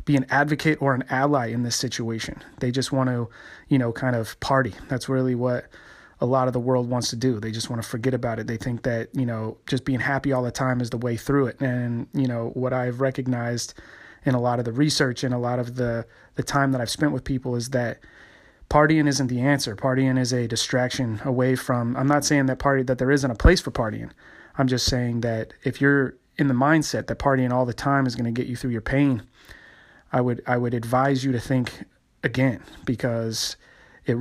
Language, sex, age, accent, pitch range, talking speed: English, male, 30-49, American, 120-135 Hz, 235 wpm